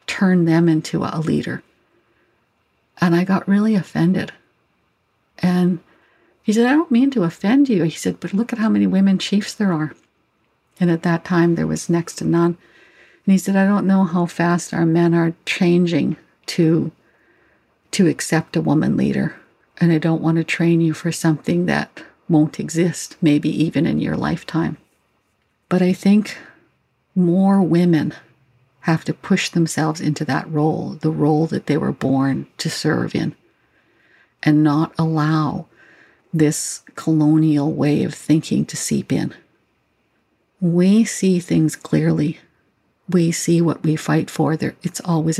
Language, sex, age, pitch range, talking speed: English, female, 60-79, 155-185 Hz, 155 wpm